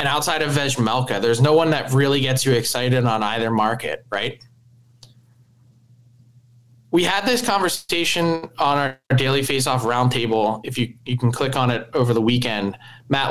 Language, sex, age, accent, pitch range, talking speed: English, male, 20-39, American, 120-145 Hz, 160 wpm